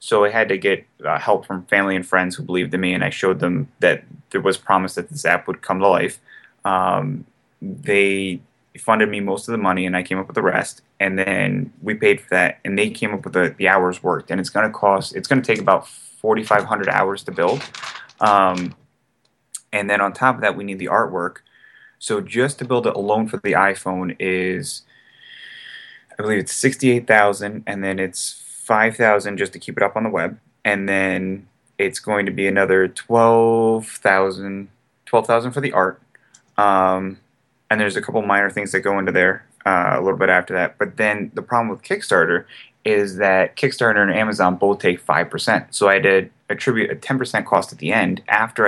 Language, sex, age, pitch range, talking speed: English, male, 20-39, 95-115 Hz, 210 wpm